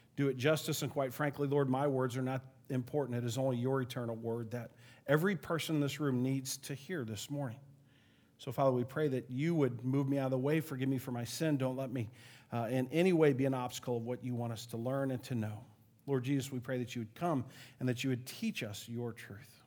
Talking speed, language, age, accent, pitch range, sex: 255 wpm, English, 40-59, American, 130-170 Hz, male